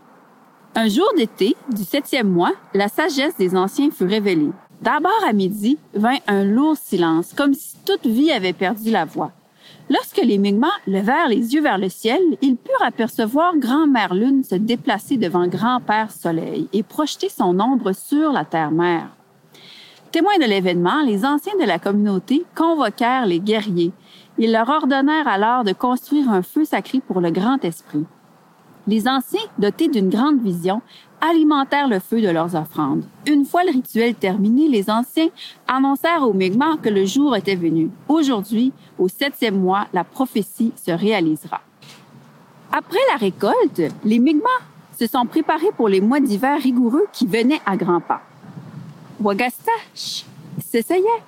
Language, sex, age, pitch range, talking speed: French, female, 40-59, 190-285 Hz, 160 wpm